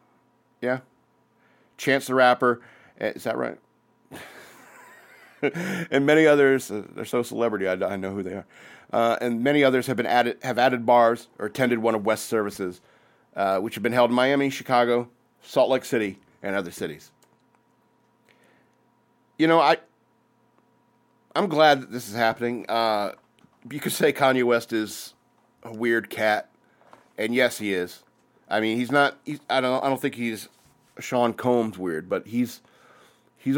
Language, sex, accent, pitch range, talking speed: English, male, American, 115-135 Hz, 160 wpm